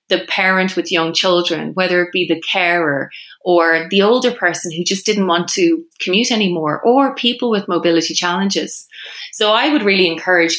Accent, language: Irish, English